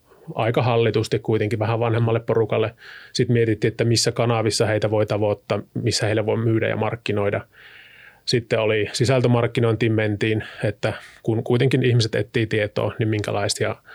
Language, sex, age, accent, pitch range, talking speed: Finnish, male, 30-49, native, 110-120 Hz, 140 wpm